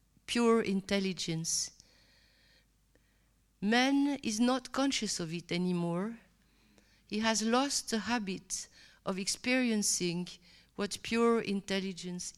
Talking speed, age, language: 90 wpm, 50-69, English